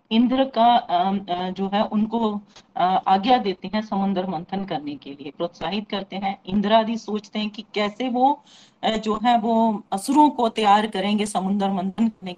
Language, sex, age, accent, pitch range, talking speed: Hindi, female, 40-59, native, 190-250 Hz, 185 wpm